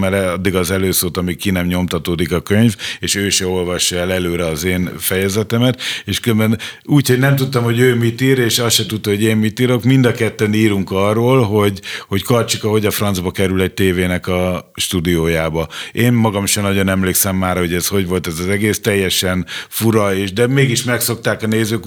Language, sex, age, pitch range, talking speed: Hungarian, male, 50-69, 90-110 Hz, 205 wpm